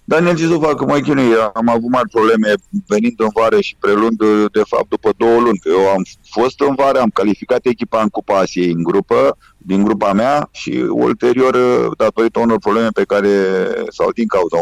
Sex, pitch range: male, 100-125 Hz